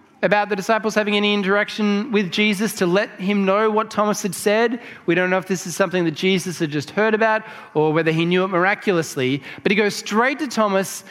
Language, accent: English, Australian